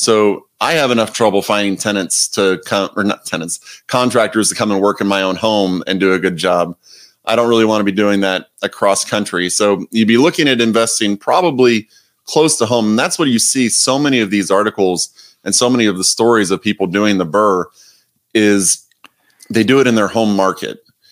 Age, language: 30-49, English